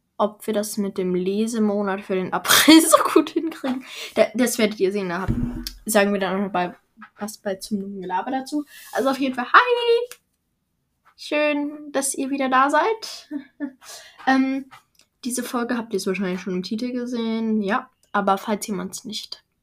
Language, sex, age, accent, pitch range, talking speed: German, female, 10-29, German, 190-245 Hz, 170 wpm